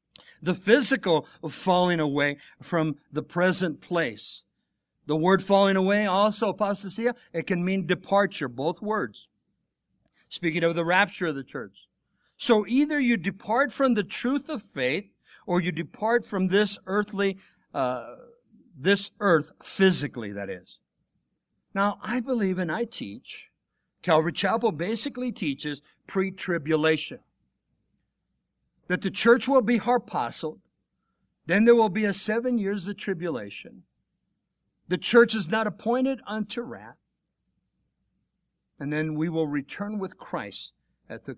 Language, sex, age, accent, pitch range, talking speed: English, male, 60-79, American, 160-220 Hz, 135 wpm